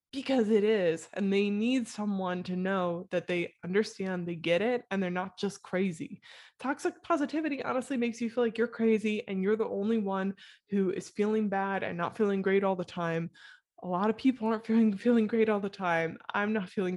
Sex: female